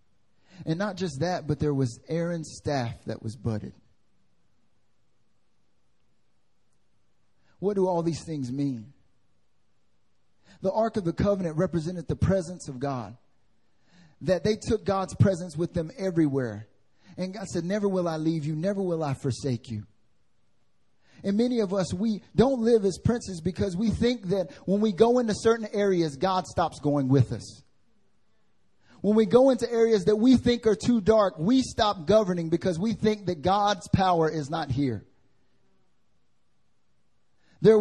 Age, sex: 30-49, male